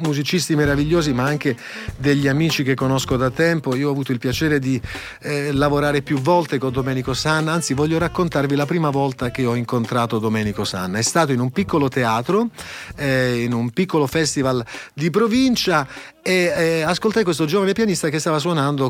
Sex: male